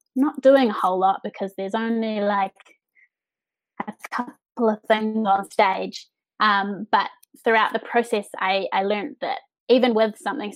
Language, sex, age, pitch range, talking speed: English, female, 20-39, 200-235 Hz, 155 wpm